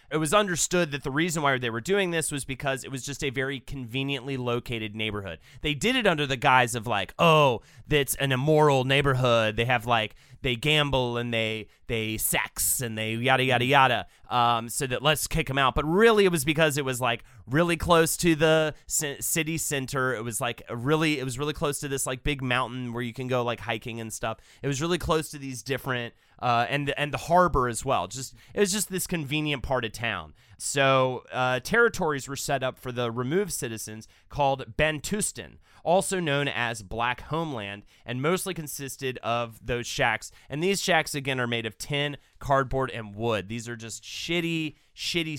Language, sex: English, male